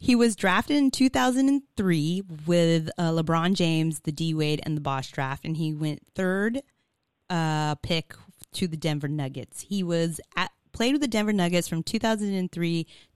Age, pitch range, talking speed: 30-49, 150-180 Hz, 160 wpm